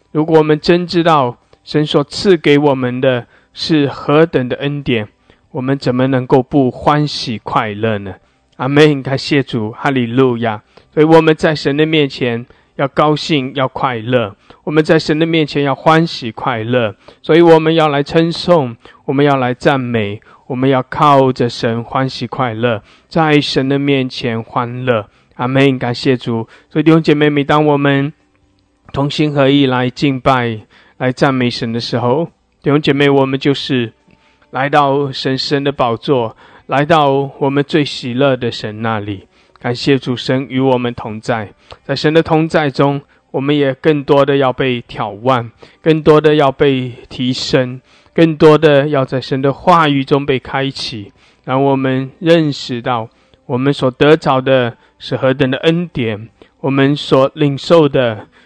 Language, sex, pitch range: English, male, 125-150 Hz